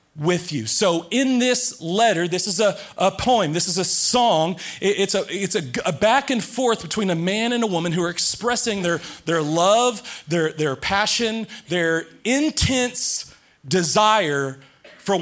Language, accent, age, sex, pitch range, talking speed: English, American, 30-49, male, 190-265 Hz, 165 wpm